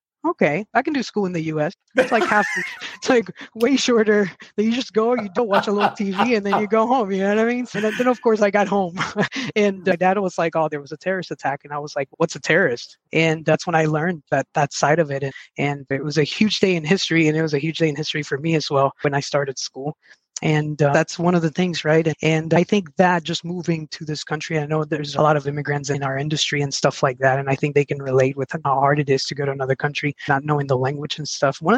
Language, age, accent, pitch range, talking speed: English, 20-39, American, 145-185 Hz, 280 wpm